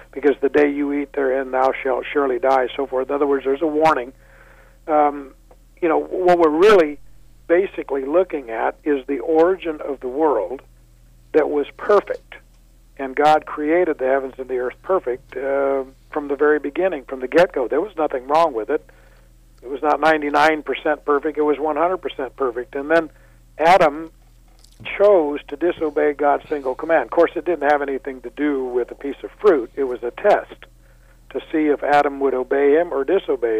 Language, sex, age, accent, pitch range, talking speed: English, male, 50-69, American, 130-155 Hz, 185 wpm